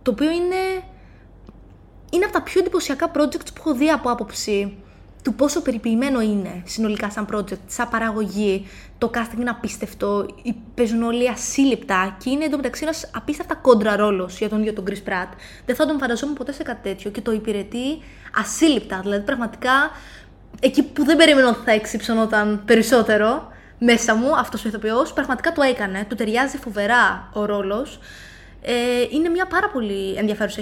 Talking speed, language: 160 wpm, Greek